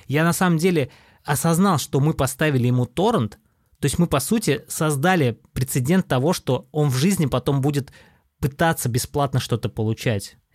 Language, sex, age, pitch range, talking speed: Russian, male, 20-39, 120-155 Hz, 160 wpm